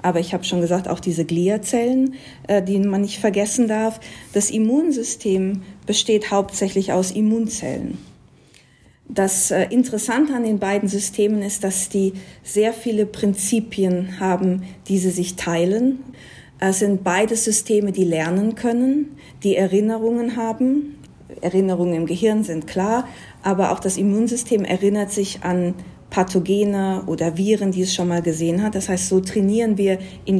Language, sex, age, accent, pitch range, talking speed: German, female, 50-69, German, 185-220 Hz, 145 wpm